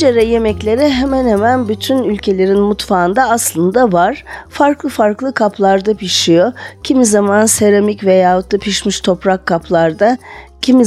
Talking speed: 120 wpm